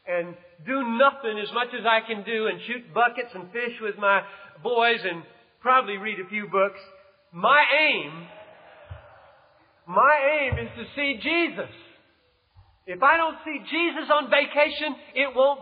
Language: English